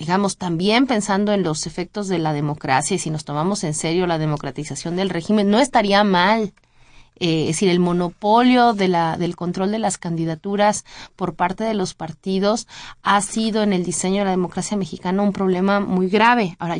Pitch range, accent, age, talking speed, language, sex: 185-225 Hz, Mexican, 30-49, 190 wpm, Spanish, female